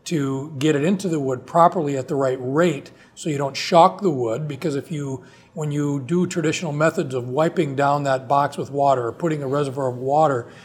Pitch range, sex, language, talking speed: 135-165 Hz, male, English, 215 wpm